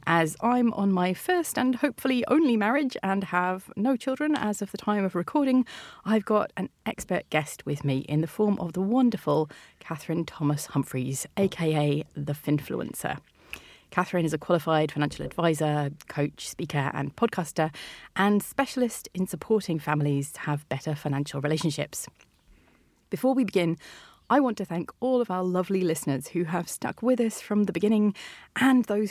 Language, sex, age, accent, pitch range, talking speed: English, female, 30-49, British, 155-225 Hz, 165 wpm